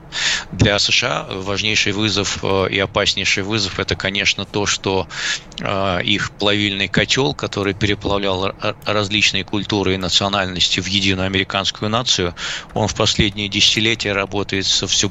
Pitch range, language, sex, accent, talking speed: 95-105 Hz, Russian, male, native, 125 wpm